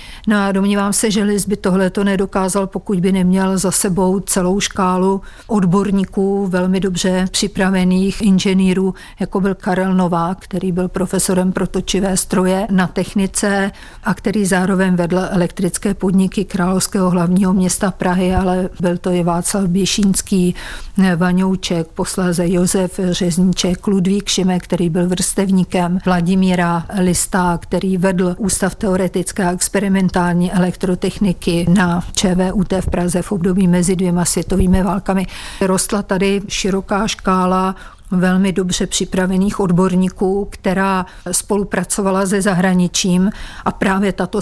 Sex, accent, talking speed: female, native, 120 wpm